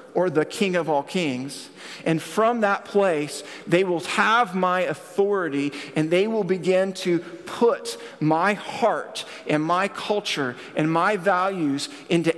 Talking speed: 145 wpm